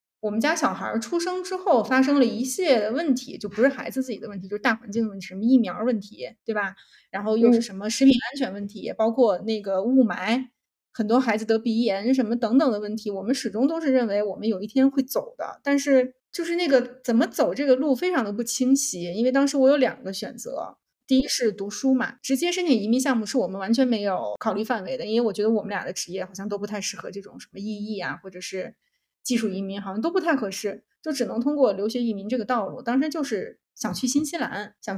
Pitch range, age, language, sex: 215-270 Hz, 20-39, Chinese, female